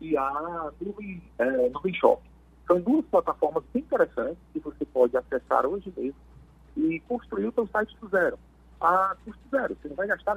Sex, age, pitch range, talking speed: male, 40-59, 125-200 Hz, 180 wpm